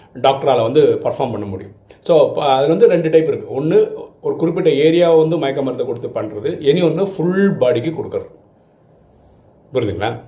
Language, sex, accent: Tamil, male, native